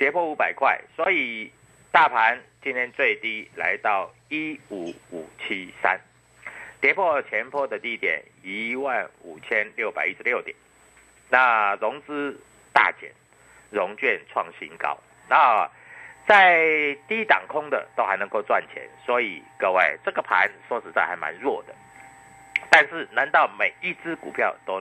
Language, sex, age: Chinese, male, 50-69